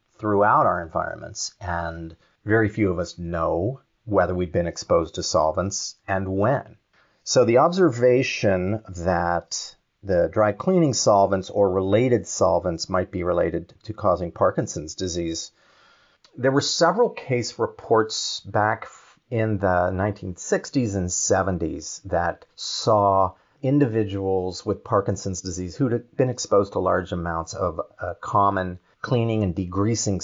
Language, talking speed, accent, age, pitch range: English, 125 wpm, American, 40-59, 90-130 Hz